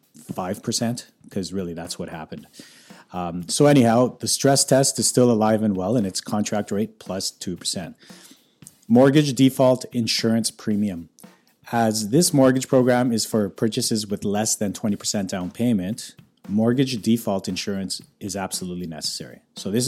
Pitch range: 95-120 Hz